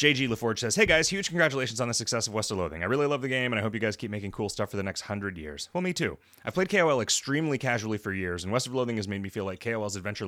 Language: English